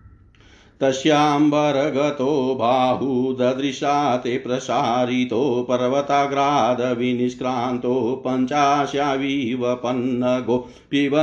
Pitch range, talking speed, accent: 125-145 Hz, 60 wpm, native